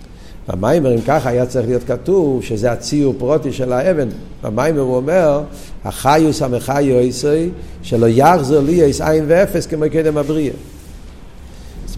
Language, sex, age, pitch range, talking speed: Hebrew, male, 50-69, 115-145 Hz, 135 wpm